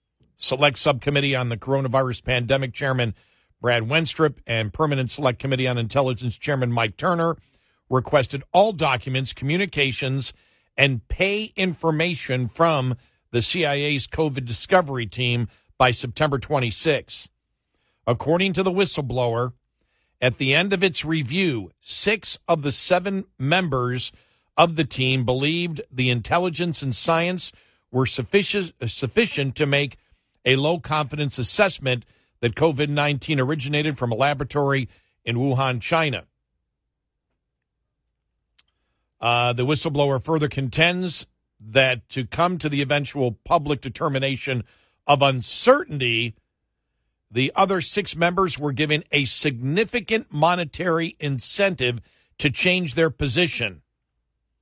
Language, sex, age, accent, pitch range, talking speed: English, male, 50-69, American, 125-160 Hz, 110 wpm